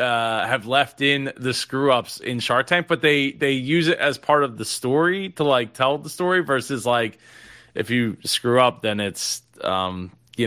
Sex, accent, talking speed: male, American, 200 wpm